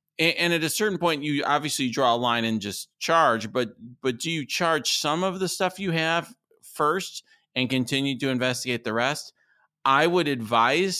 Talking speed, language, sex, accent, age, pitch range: 185 wpm, English, male, American, 40-59, 110-140 Hz